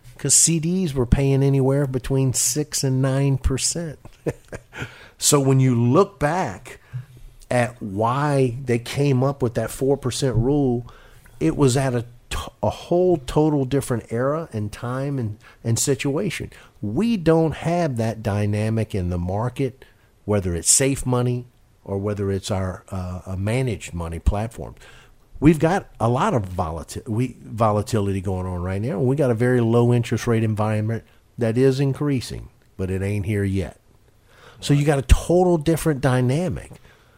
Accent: American